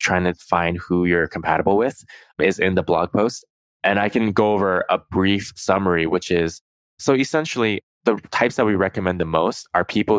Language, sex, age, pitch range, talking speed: English, male, 20-39, 85-100 Hz, 195 wpm